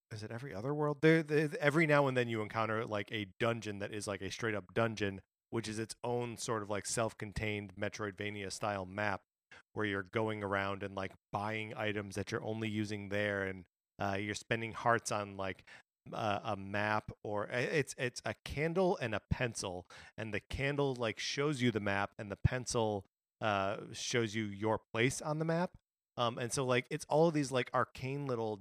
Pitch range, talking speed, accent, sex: 105-125 Hz, 200 wpm, American, male